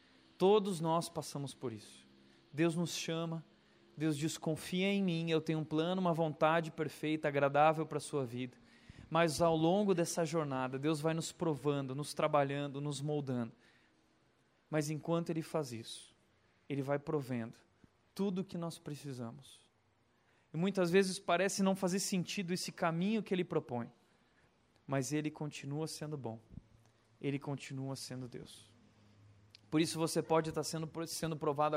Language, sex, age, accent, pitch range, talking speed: Portuguese, male, 20-39, Brazilian, 125-165 Hz, 150 wpm